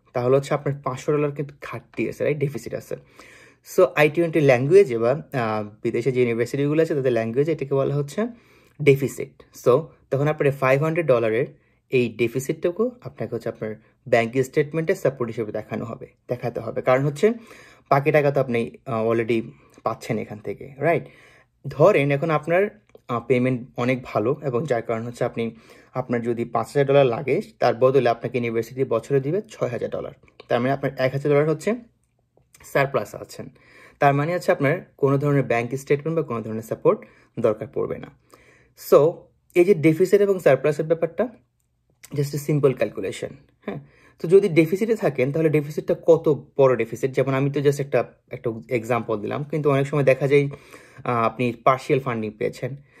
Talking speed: 80 wpm